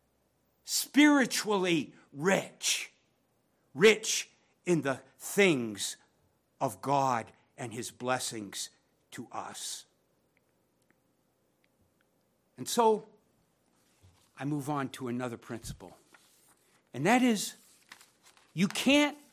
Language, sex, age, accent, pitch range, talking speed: English, male, 60-79, American, 145-225 Hz, 80 wpm